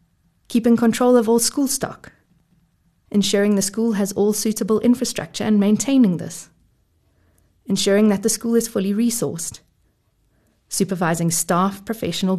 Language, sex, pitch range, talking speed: English, female, 175-225 Hz, 125 wpm